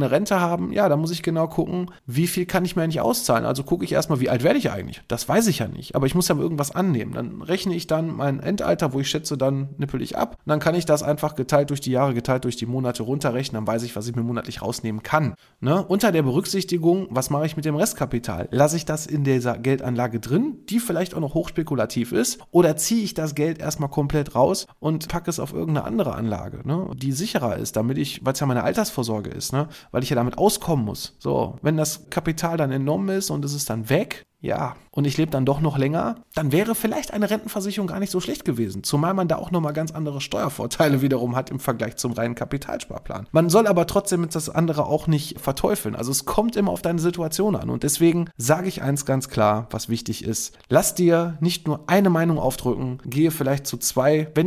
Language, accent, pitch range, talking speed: German, German, 125-170 Hz, 230 wpm